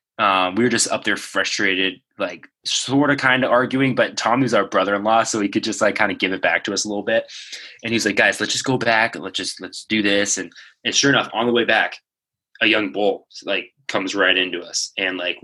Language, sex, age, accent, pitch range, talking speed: English, male, 20-39, American, 95-115 Hz, 250 wpm